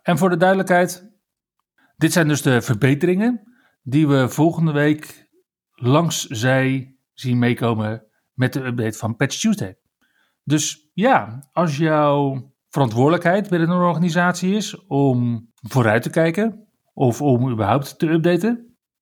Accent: Dutch